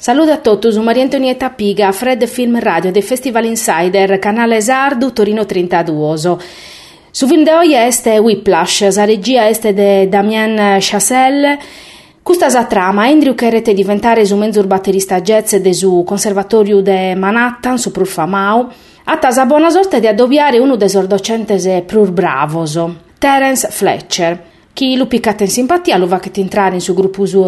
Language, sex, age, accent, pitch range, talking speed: Italian, female, 30-49, native, 190-240 Hz, 160 wpm